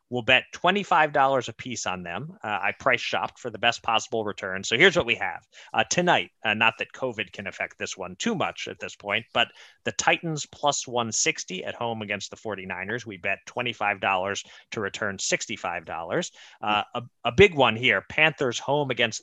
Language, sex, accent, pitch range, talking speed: English, male, American, 110-140 Hz, 190 wpm